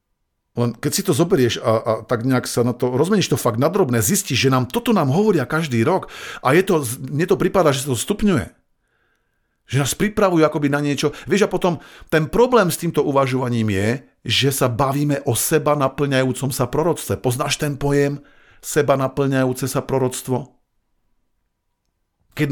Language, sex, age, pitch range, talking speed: Slovak, male, 50-69, 110-145 Hz, 165 wpm